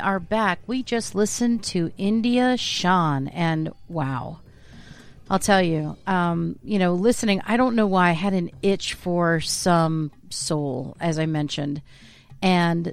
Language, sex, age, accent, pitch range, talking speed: English, female, 40-59, American, 165-205 Hz, 150 wpm